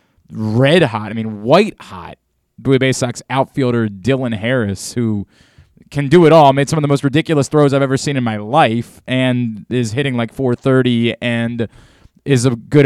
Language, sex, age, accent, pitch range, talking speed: English, male, 20-39, American, 115-150 Hz, 175 wpm